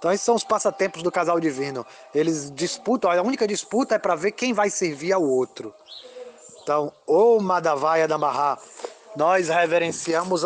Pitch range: 165-205 Hz